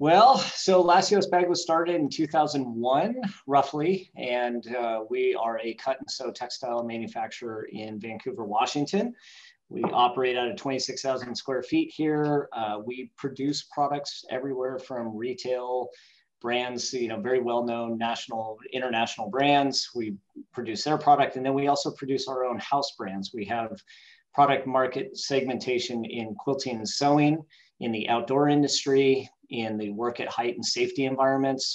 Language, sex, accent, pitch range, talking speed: English, male, American, 120-145 Hz, 150 wpm